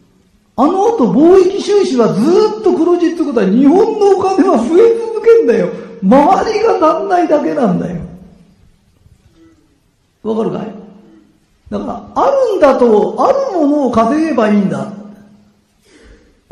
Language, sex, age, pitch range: Japanese, male, 50-69, 195-315 Hz